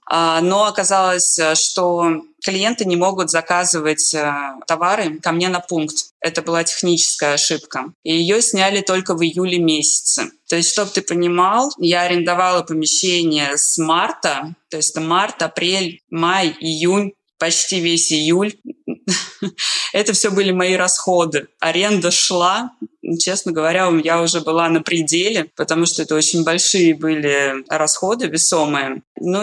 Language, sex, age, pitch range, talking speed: Russian, female, 20-39, 160-190 Hz, 135 wpm